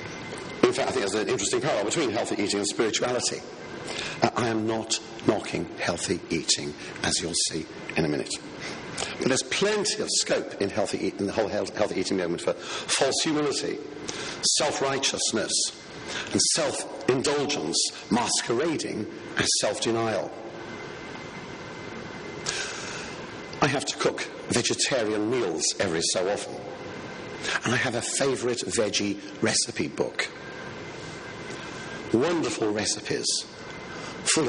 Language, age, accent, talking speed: English, 50-69, British, 120 wpm